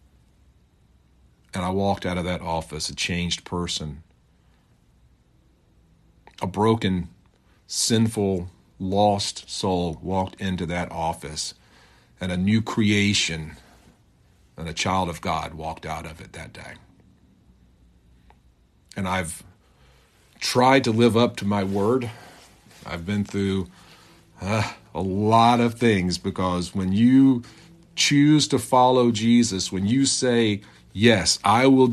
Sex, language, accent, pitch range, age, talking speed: male, English, American, 85-115 Hz, 50-69, 120 wpm